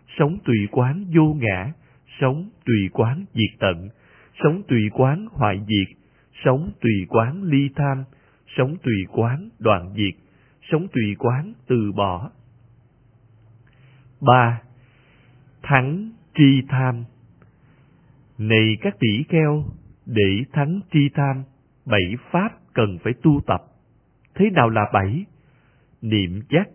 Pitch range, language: 110-145 Hz, Vietnamese